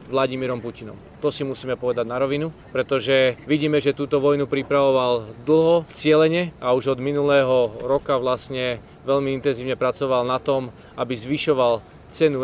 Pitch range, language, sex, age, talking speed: 125-145 Hz, Slovak, male, 40-59, 145 wpm